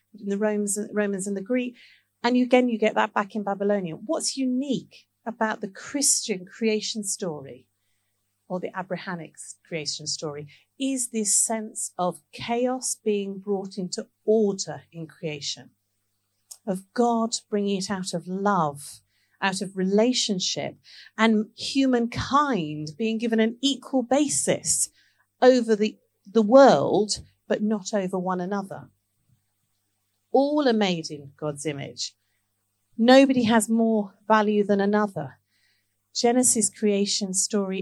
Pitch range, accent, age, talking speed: 150-225 Hz, British, 50-69, 125 wpm